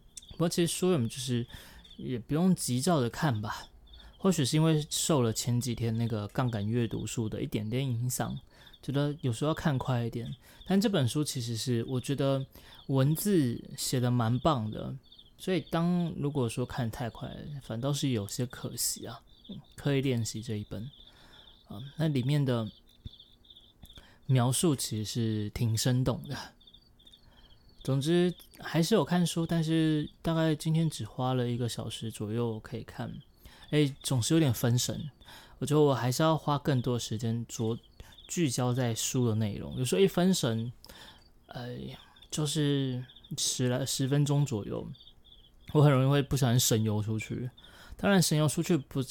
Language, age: Chinese, 20-39